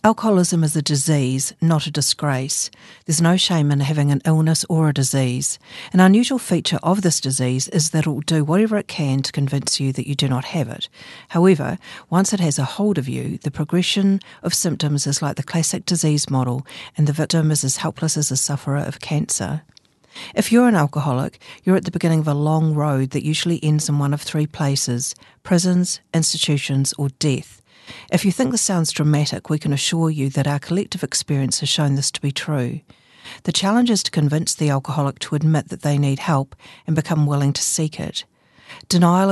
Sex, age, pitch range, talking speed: female, 50-69, 140-170 Hz, 200 wpm